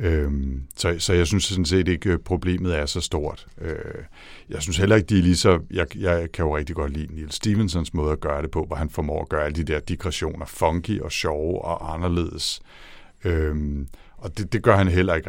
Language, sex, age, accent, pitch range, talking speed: Danish, male, 60-79, native, 80-95 Hz, 215 wpm